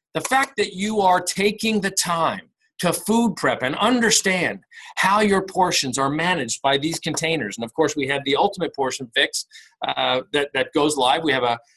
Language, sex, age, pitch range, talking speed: English, male, 50-69, 140-210 Hz, 195 wpm